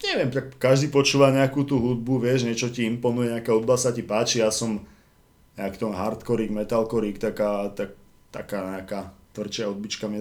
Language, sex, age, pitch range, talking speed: Slovak, male, 20-39, 105-125 Hz, 165 wpm